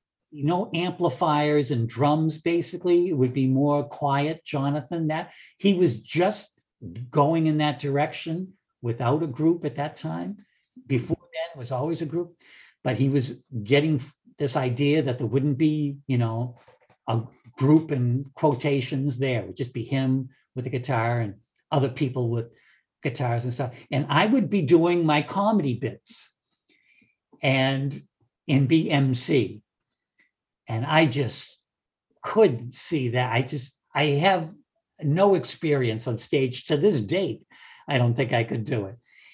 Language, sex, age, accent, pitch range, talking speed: English, male, 60-79, American, 120-155 Hz, 155 wpm